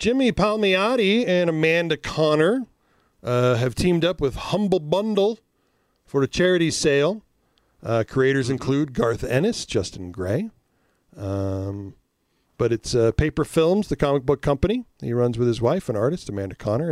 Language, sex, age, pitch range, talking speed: English, male, 40-59, 130-165 Hz, 150 wpm